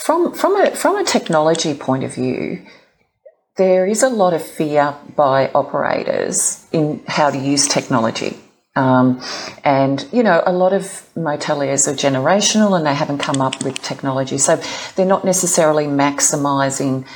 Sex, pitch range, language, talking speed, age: female, 135-160 Hz, English, 155 wpm, 40-59